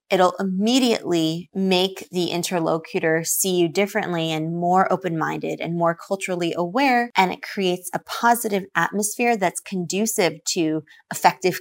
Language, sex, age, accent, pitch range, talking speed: English, female, 20-39, American, 165-200 Hz, 130 wpm